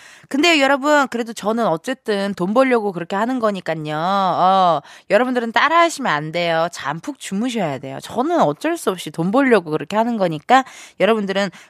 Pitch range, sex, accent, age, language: 180-275 Hz, female, native, 20-39, Korean